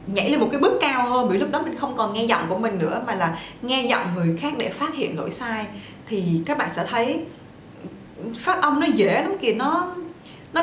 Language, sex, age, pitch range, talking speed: Vietnamese, female, 20-39, 185-275 Hz, 235 wpm